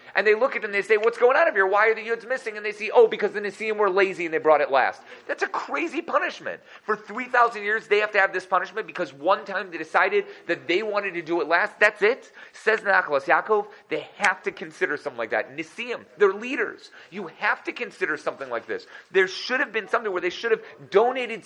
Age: 30-49